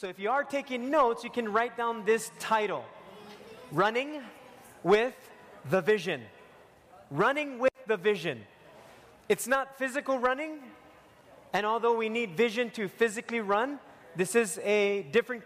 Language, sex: English, male